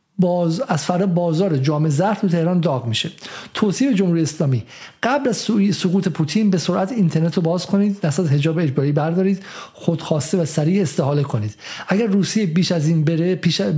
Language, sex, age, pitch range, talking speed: Persian, male, 50-69, 155-205 Hz, 170 wpm